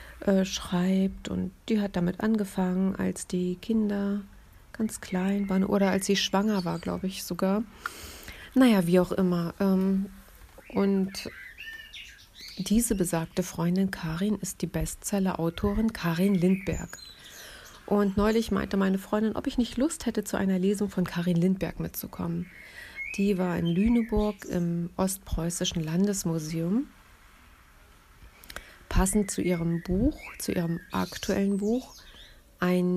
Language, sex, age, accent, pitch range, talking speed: German, female, 30-49, German, 175-205 Hz, 125 wpm